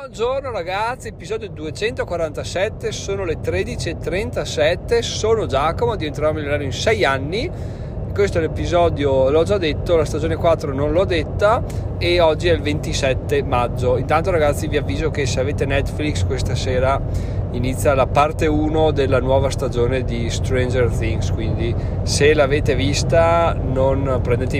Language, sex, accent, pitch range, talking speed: Italian, male, native, 105-140 Hz, 140 wpm